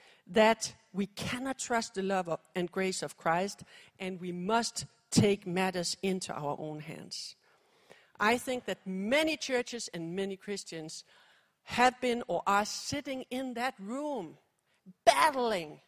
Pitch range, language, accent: 195-255 Hz, English, Danish